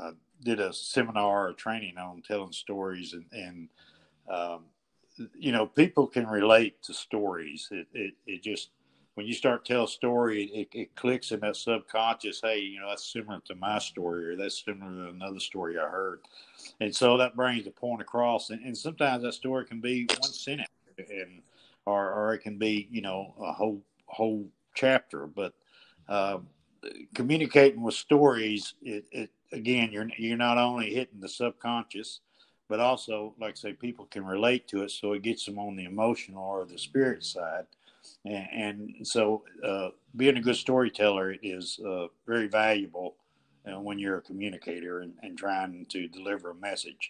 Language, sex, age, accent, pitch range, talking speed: English, male, 60-79, American, 100-120 Hz, 180 wpm